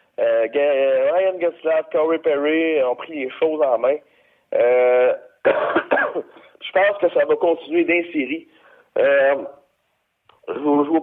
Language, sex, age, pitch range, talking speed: French, male, 50-69, 140-190 Hz, 125 wpm